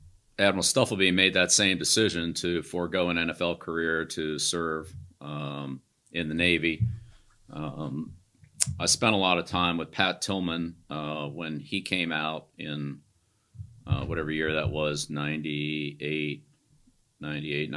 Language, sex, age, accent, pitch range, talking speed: English, male, 50-69, American, 75-90 Hz, 130 wpm